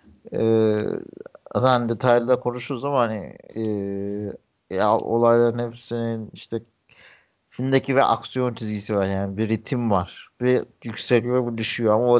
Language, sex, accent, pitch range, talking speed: Turkish, male, native, 105-120 Hz, 135 wpm